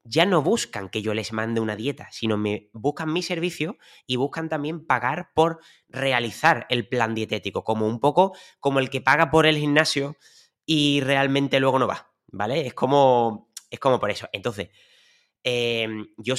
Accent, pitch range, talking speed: Spanish, 105-145 Hz, 175 wpm